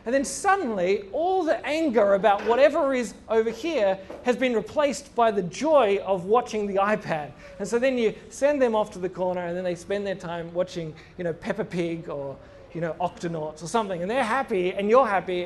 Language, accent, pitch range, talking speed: English, Australian, 180-240 Hz, 210 wpm